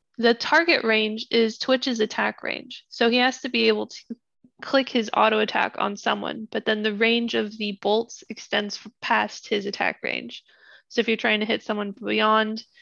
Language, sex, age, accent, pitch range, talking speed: English, female, 20-39, American, 220-260 Hz, 185 wpm